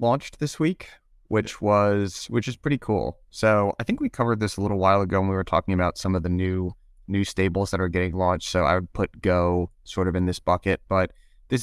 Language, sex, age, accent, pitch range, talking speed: English, male, 20-39, American, 90-110 Hz, 235 wpm